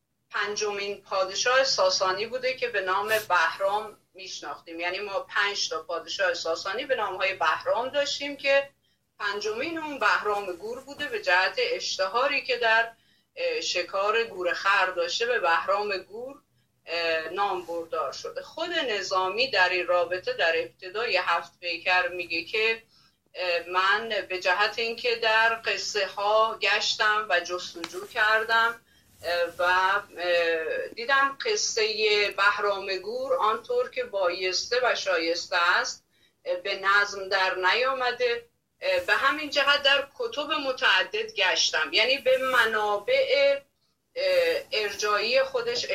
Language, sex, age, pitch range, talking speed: Persian, female, 30-49, 180-265 Hz, 115 wpm